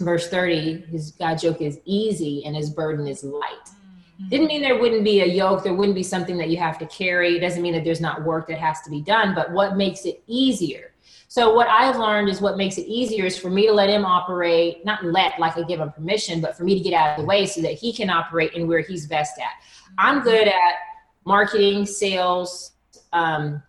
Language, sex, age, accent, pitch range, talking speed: English, female, 30-49, American, 175-220 Hz, 235 wpm